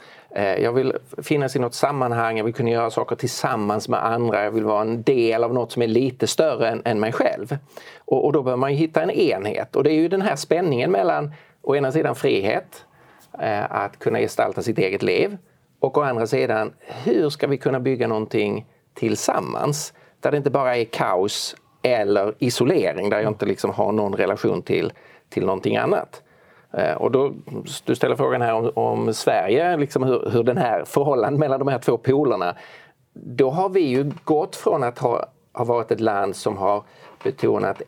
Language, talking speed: Swedish, 195 wpm